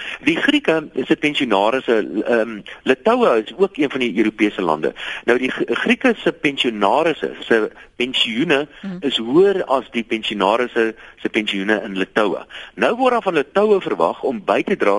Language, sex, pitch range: English, male, 110-185 Hz